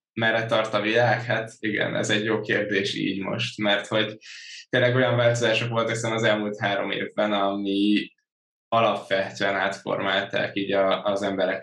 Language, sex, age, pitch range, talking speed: Hungarian, male, 10-29, 95-105 Hz, 150 wpm